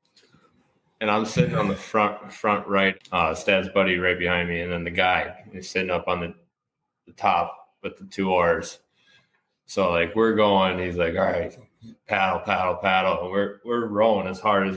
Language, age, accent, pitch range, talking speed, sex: English, 20-39, American, 90-100 Hz, 190 wpm, male